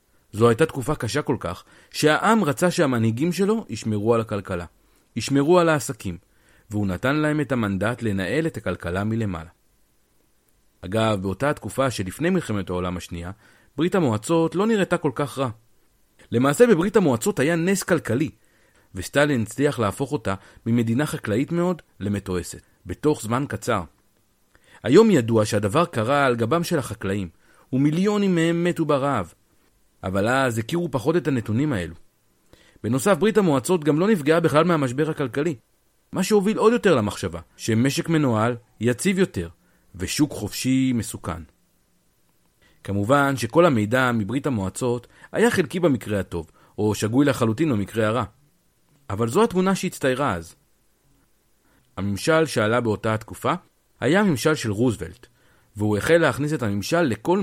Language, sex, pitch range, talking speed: Hebrew, male, 105-155 Hz, 135 wpm